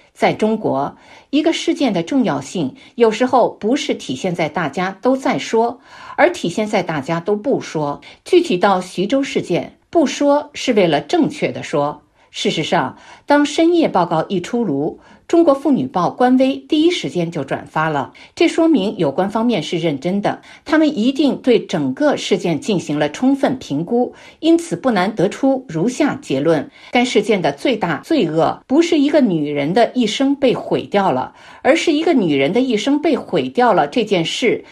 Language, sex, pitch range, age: Chinese, female, 175-290 Hz, 50-69